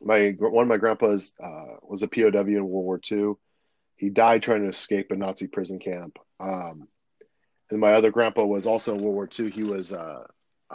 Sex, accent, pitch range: male, American, 95-115 Hz